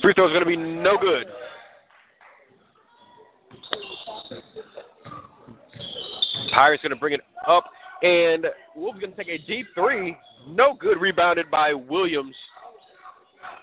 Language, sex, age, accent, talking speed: English, male, 30-49, American, 115 wpm